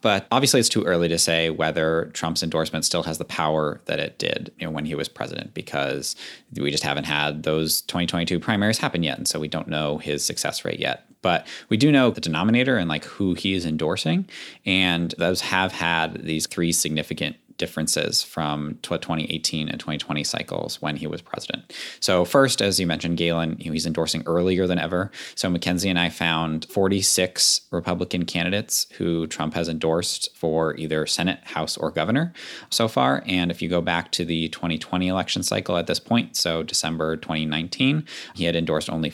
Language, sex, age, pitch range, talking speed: English, male, 20-39, 80-100 Hz, 185 wpm